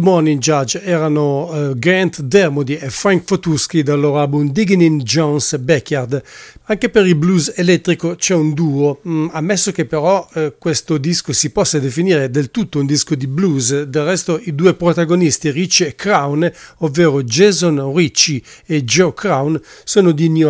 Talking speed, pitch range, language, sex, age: 165 wpm, 150-175 Hz, English, male, 50-69